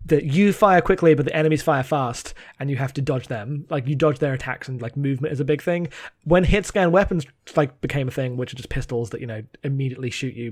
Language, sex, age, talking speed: English, male, 20-39, 255 wpm